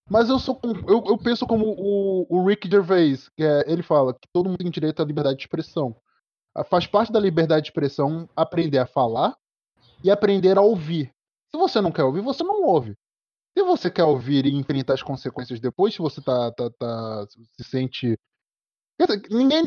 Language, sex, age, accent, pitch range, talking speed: Portuguese, male, 20-39, Brazilian, 140-220 Hz, 170 wpm